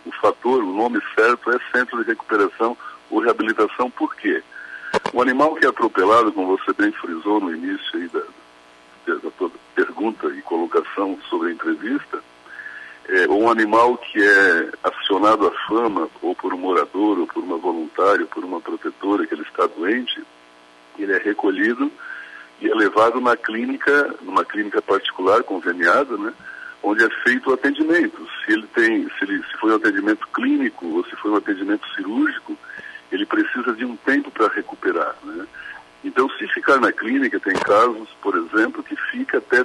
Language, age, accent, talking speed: Portuguese, 60-79, Brazilian, 170 wpm